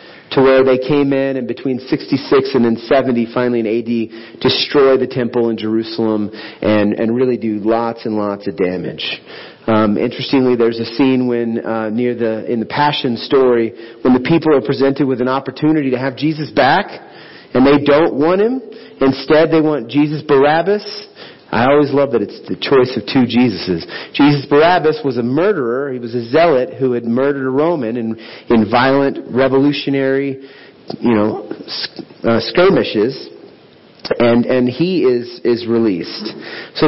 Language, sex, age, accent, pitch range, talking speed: English, male, 40-59, American, 120-175 Hz, 170 wpm